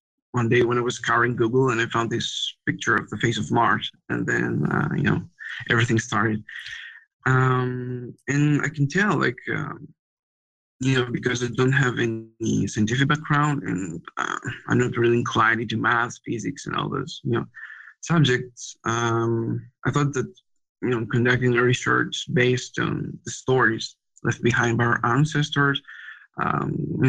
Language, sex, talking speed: English, male, 165 wpm